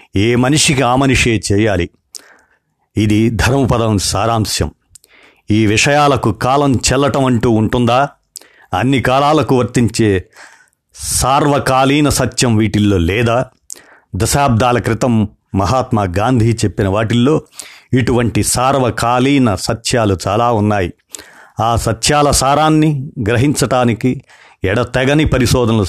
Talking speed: 90 wpm